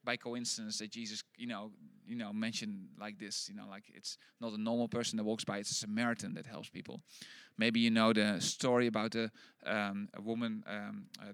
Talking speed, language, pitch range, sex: 200 wpm, Dutch, 110-130 Hz, male